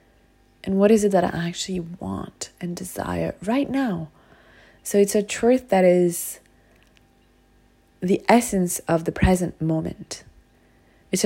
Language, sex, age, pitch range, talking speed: English, female, 20-39, 165-200 Hz, 135 wpm